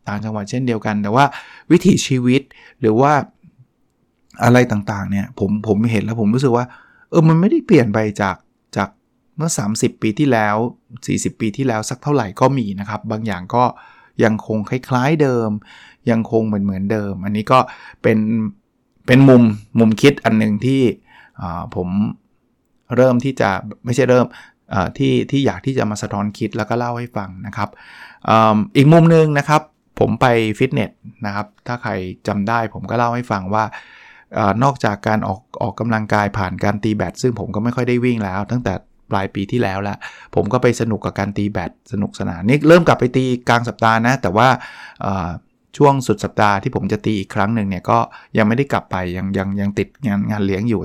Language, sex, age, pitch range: Thai, male, 20-39, 105-125 Hz